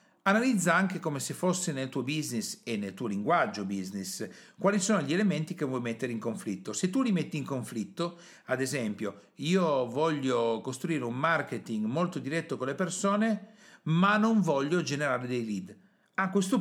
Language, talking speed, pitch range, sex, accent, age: Italian, 175 wpm, 125-195 Hz, male, native, 50-69